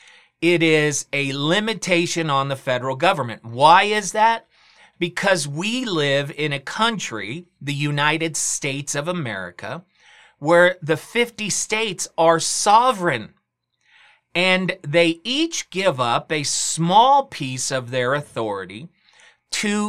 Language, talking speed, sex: English, 120 wpm, male